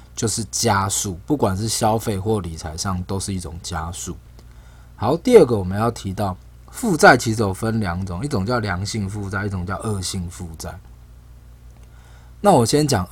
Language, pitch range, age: Chinese, 85-115 Hz, 20-39